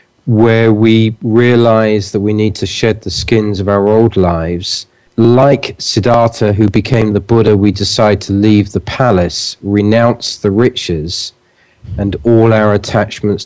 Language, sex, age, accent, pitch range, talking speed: English, male, 40-59, British, 100-115 Hz, 145 wpm